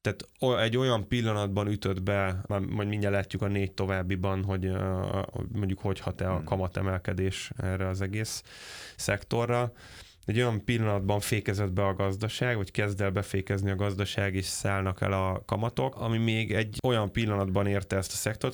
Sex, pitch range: male, 95-110 Hz